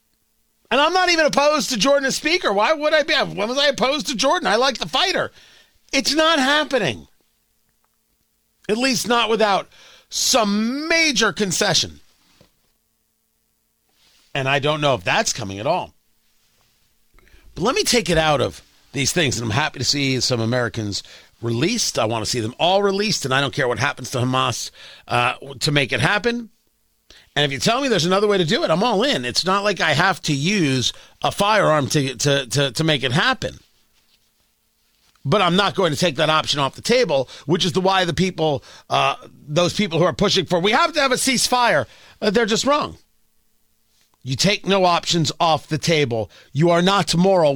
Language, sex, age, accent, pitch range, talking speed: English, male, 40-59, American, 130-220 Hz, 195 wpm